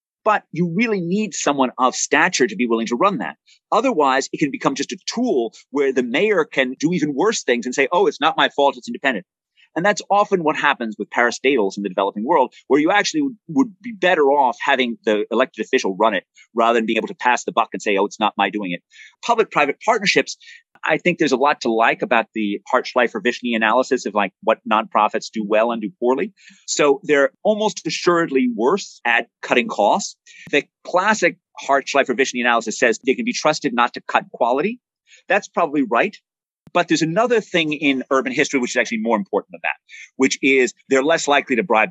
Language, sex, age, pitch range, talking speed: English, male, 30-49, 120-180 Hz, 210 wpm